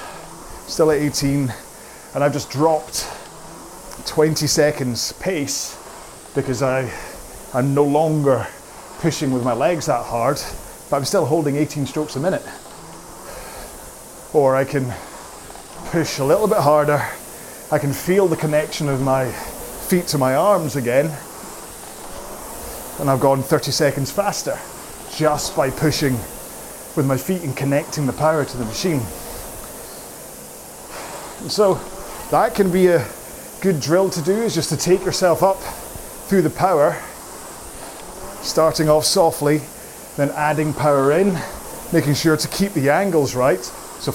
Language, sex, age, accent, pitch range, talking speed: English, male, 30-49, British, 135-165 Hz, 135 wpm